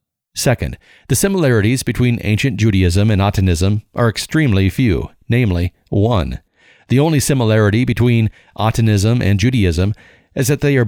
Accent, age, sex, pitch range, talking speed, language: American, 50-69, male, 100-125 Hz, 130 wpm, English